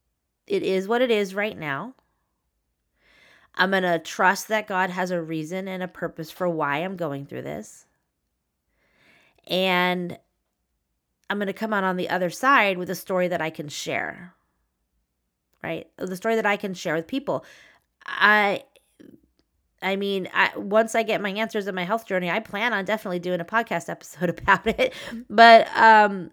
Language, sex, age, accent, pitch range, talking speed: English, female, 20-39, American, 170-215 Hz, 170 wpm